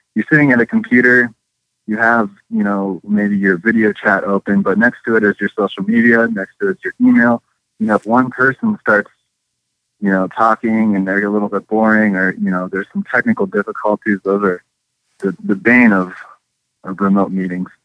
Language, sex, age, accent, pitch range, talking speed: English, male, 20-39, American, 95-120 Hz, 190 wpm